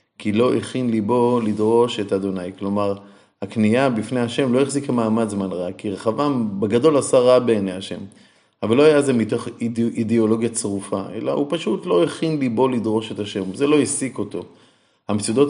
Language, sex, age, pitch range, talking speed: Hebrew, male, 30-49, 105-125 Hz, 175 wpm